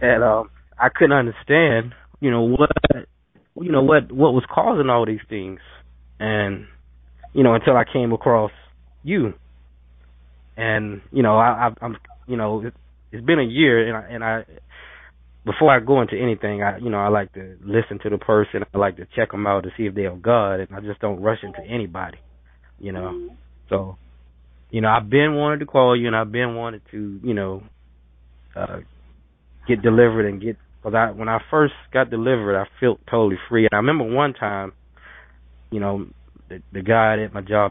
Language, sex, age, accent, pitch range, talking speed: English, male, 20-39, American, 90-120 Hz, 195 wpm